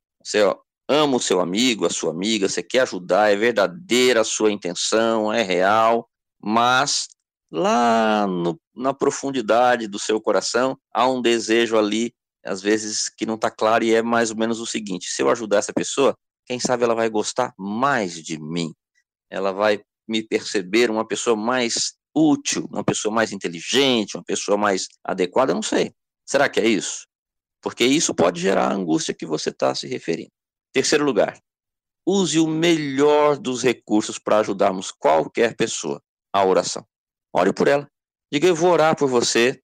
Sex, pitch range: male, 105-125 Hz